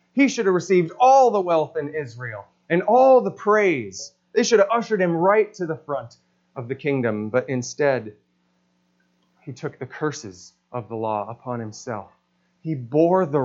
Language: English